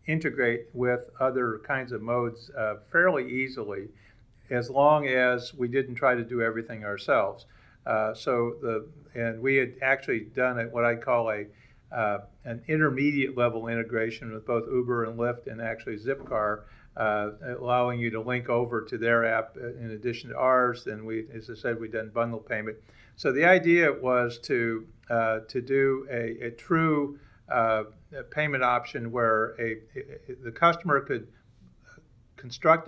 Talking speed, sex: 155 wpm, male